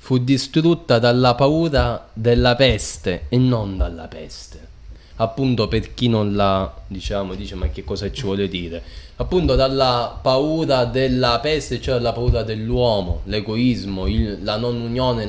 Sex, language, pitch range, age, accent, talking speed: male, Italian, 105-135 Hz, 20-39, native, 145 wpm